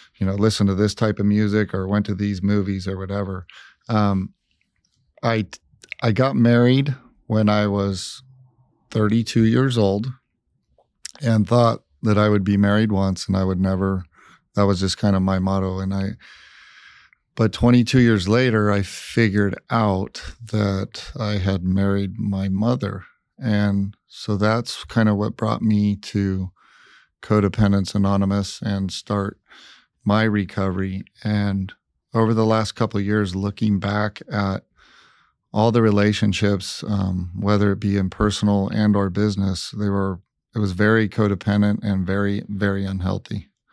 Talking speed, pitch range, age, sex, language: 150 wpm, 100-110 Hz, 40-59, male, English